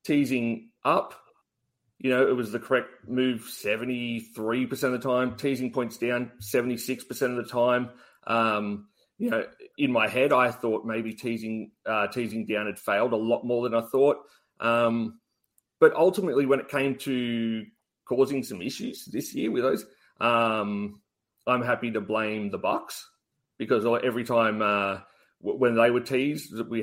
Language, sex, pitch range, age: English, male, 110-135 Hz, 30-49